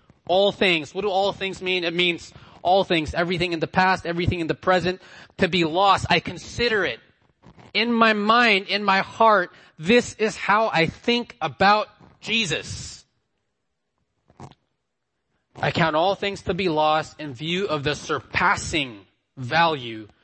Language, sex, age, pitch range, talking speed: English, male, 20-39, 135-180 Hz, 150 wpm